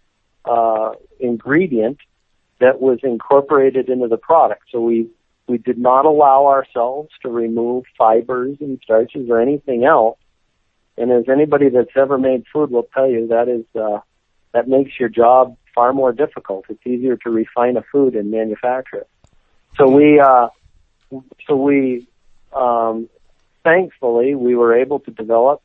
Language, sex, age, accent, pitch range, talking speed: English, male, 50-69, American, 115-135 Hz, 150 wpm